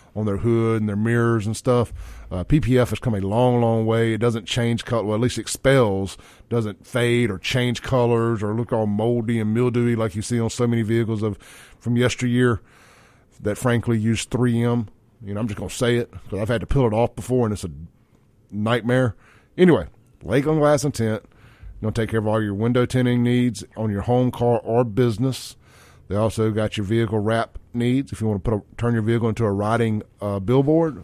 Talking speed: 215 wpm